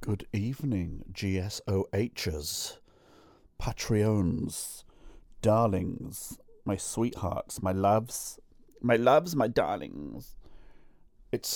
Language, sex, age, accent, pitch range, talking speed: English, male, 40-59, British, 95-115 Hz, 75 wpm